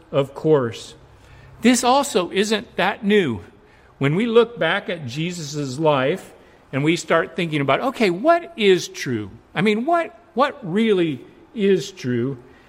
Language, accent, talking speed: English, American, 140 wpm